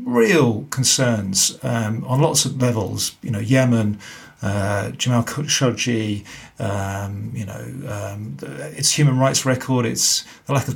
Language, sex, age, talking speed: English, male, 40-59, 145 wpm